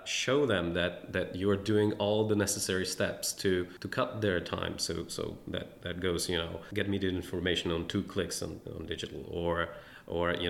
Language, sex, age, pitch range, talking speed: English, male, 30-49, 85-100 Hz, 205 wpm